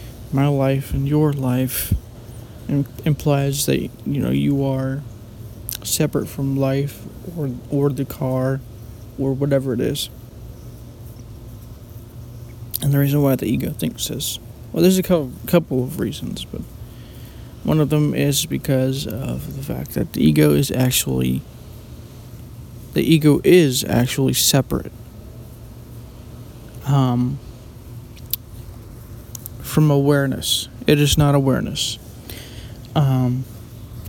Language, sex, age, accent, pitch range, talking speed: English, male, 20-39, American, 115-140 Hz, 110 wpm